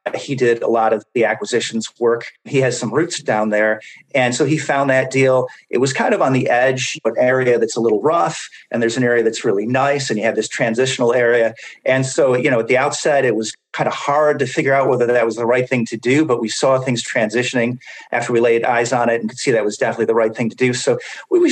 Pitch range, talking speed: 120-145 Hz, 260 wpm